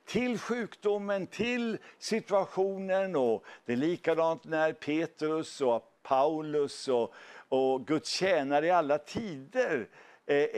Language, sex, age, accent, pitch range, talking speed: English, male, 60-79, Swedish, 135-185 Hz, 115 wpm